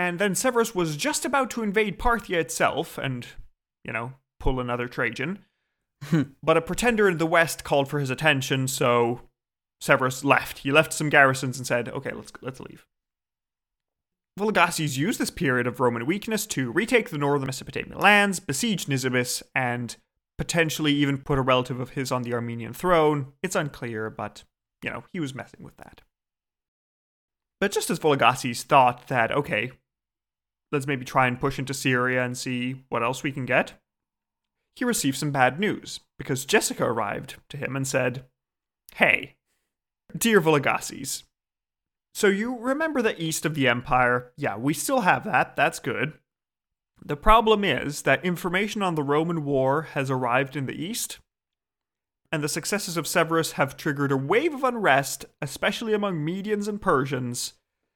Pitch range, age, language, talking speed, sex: 130-180 Hz, 30-49, English, 165 wpm, male